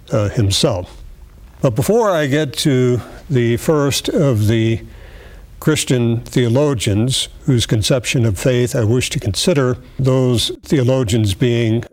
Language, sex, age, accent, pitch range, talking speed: English, male, 60-79, American, 110-135 Hz, 120 wpm